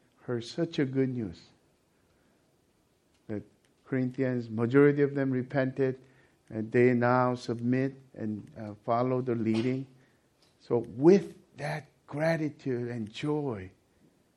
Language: English